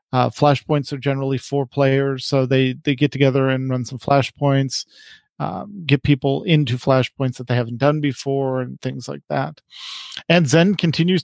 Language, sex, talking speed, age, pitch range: English, male, 175 wpm, 40-59, 135-160 Hz